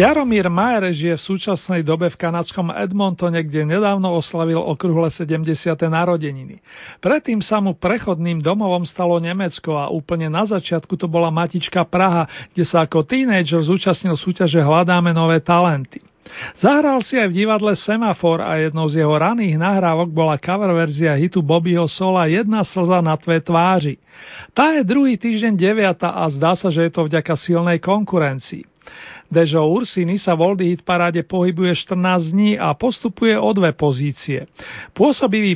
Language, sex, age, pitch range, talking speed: Slovak, male, 40-59, 165-195 Hz, 155 wpm